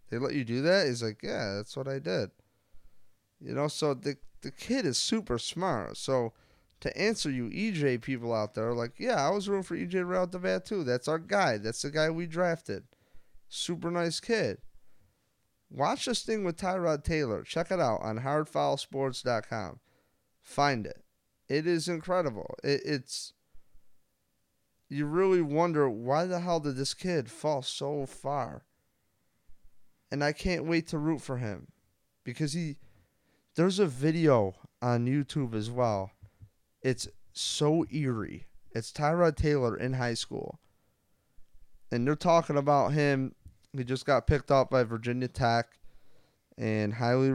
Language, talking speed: English, 155 wpm